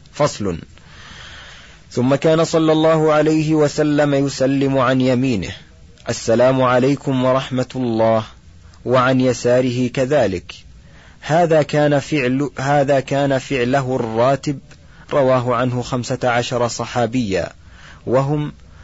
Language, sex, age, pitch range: Arabic, male, 30-49, 120-140 Hz